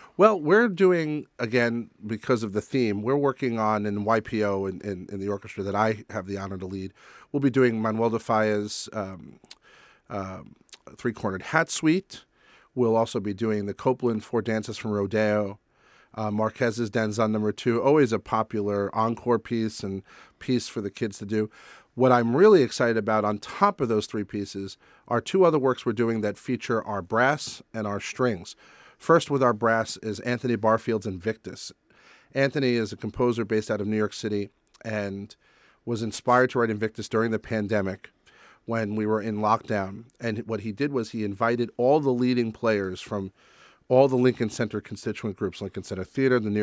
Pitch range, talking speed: 105-120 Hz, 180 wpm